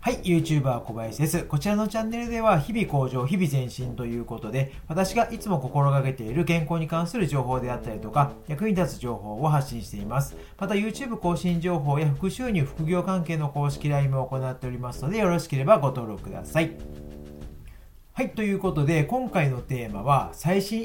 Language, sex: Japanese, male